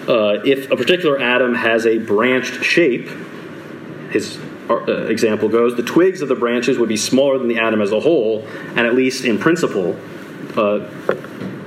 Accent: American